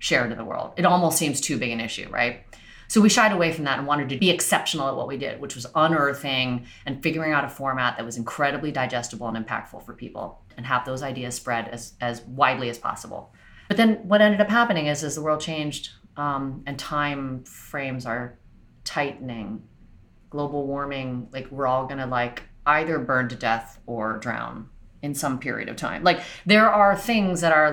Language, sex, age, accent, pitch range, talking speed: English, female, 30-49, American, 120-150 Hz, 205 wpm